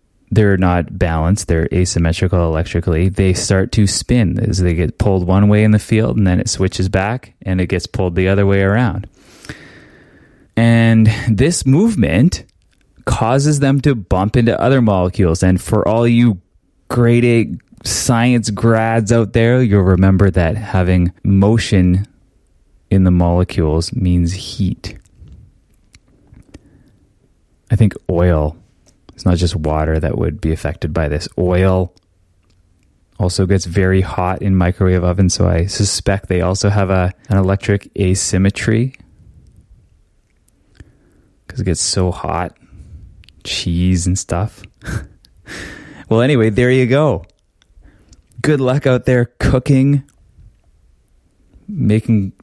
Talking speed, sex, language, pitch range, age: 125 wpm, male, English, 90-110 Hz, 20-39